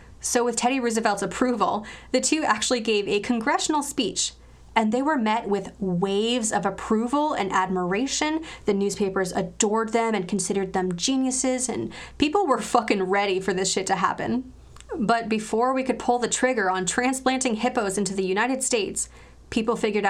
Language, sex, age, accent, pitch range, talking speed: English, female, 20-39, American, 195-245 Hz, 165 wpm